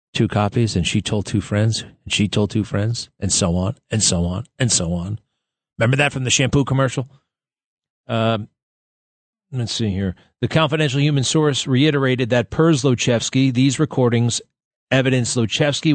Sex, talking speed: male, 160 wpm